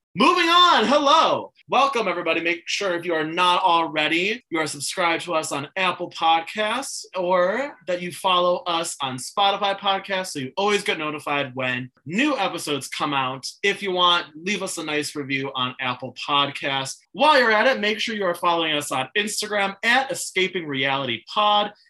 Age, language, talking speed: 20-39, English, 175 wpm